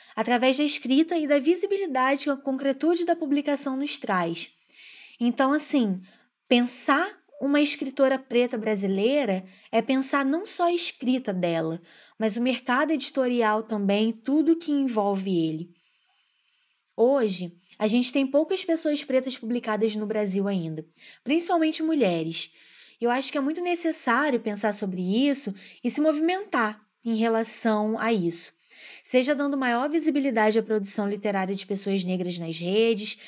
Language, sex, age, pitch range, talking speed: Portuguese, female, 20-39, 210-285 Hz, 140 wpm